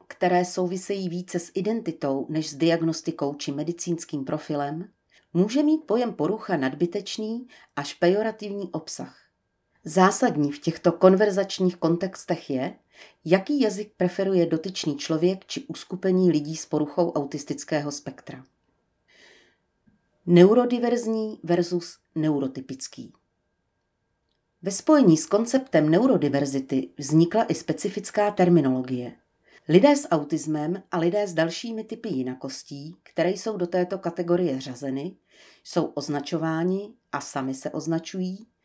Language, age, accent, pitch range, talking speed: Czech, 40-59, native, 150-200 Hz, 110 wpm